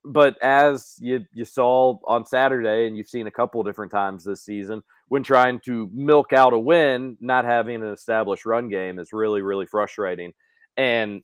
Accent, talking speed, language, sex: American, 180 wpm, English, male